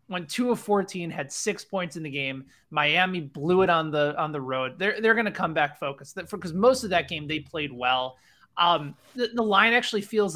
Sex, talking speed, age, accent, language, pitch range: male, 225 wpm, 20-39, American, English, 140-180 Hz